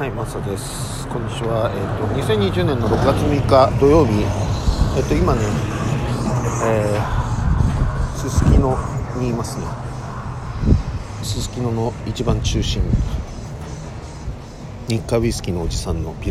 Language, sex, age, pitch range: Japanese, male, 50-69, 90-115 Hz